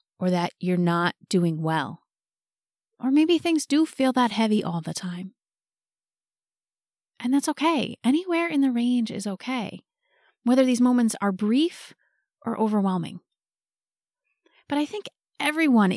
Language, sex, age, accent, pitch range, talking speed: English, female, 30-49, American, 210-270 Hz, 135 wpm